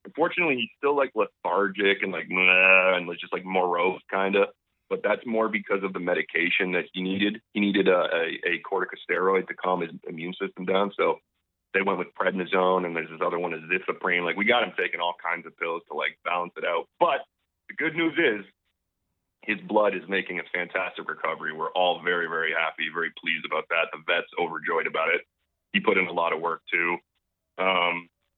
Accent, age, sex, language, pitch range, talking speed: American, 30-49, male, English, 90-105 Hz, 205 wpm